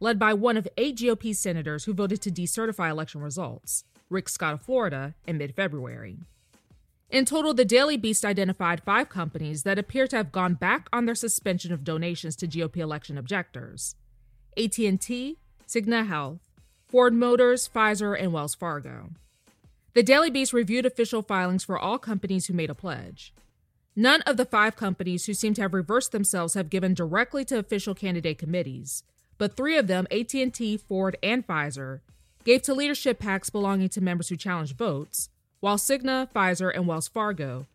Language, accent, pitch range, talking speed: English, American, 170-240 Hz, 170 wpm